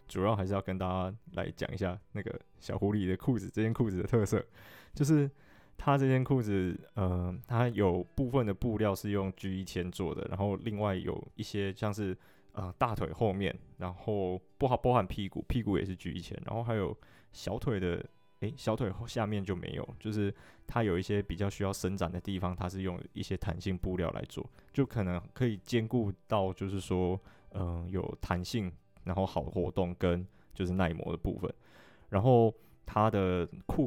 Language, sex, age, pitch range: Chinese, male, 20-39, 90-110 Hz